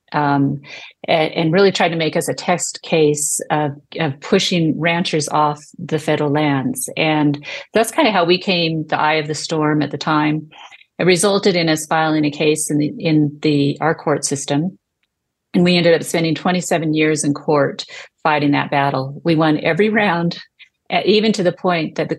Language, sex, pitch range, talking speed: English, female, 145-175 Hz, 185 wpm